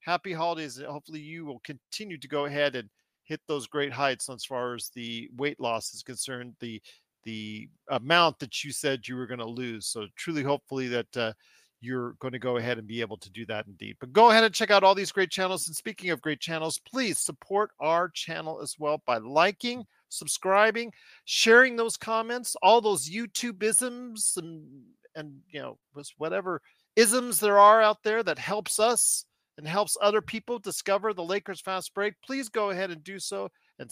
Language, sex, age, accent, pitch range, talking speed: English, male, 40-59, American, 140-215 Hz, 195 wpm